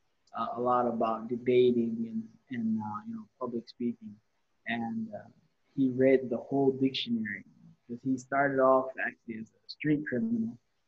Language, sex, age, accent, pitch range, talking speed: Indonesian, male, 20-39, American, 115-140 Hz, 165 wpm